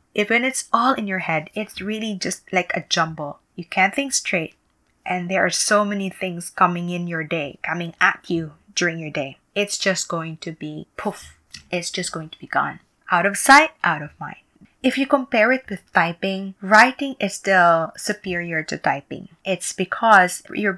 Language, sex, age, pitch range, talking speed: English, female, 20-39, 165-205 Hz, 190 wpm